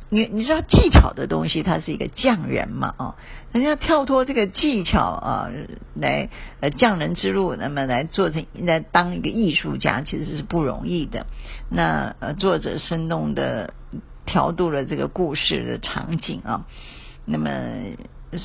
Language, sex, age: Chinese, female, 50-69